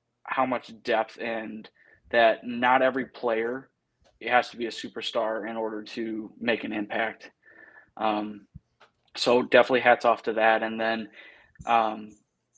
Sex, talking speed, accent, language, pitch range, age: male, 145 wpm, American, English, 110-120 Hz, 20-39